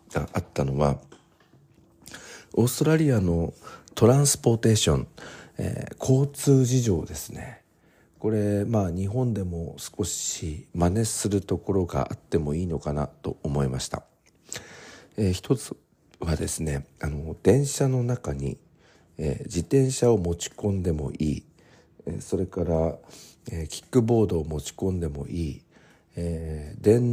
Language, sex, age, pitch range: Japanese, male, 50-69, 75-105 Hz